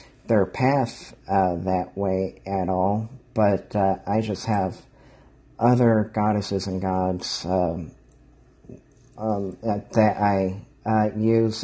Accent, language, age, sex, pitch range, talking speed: American, English, 50-69, male, 100-115 Hz, 120 wpm